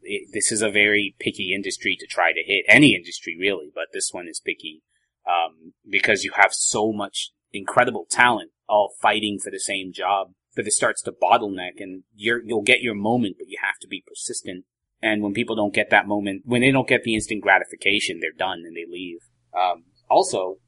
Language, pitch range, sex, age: English, 95-125 Hz, male, 30-49